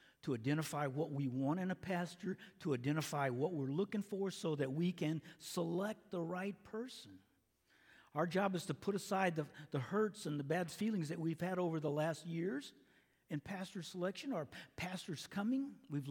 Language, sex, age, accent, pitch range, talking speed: English, male, 50-69, American, 135-200 Hz, 185 wpm